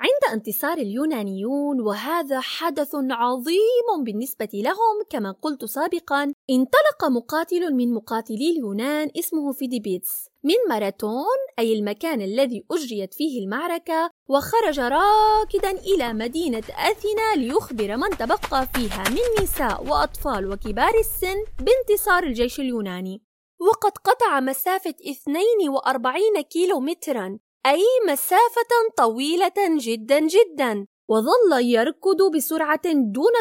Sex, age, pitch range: female, 20-39, 255-385 Hz